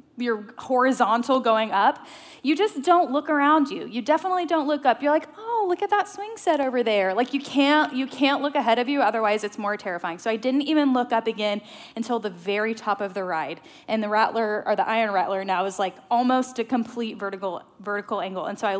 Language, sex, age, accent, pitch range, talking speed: English, female, 10-29, American, 210-275 Hz, 225 wpm